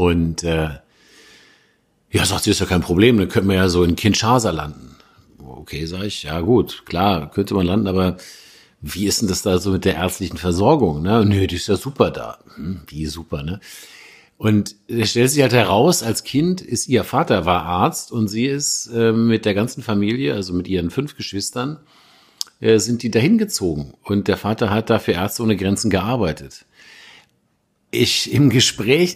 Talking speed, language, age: 185 wpm, German, 50-69